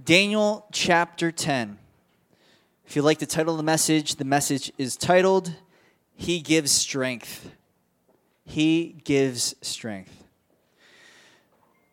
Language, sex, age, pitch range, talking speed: English, male, 20-39, 150-190 Hz, 105 wpm